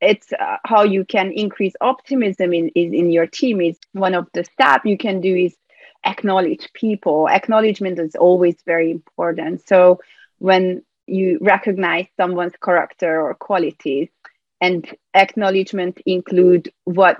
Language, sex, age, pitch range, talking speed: English, female, 30-49, 170-205 Hz, 140 wpm